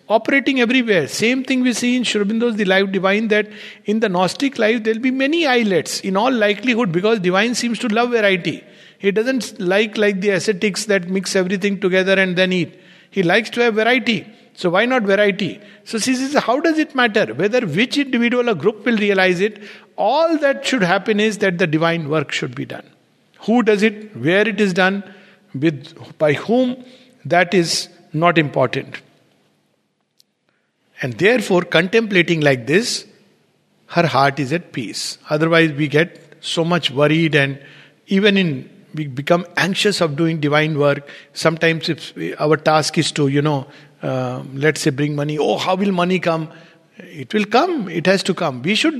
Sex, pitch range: male, 165-225 Hz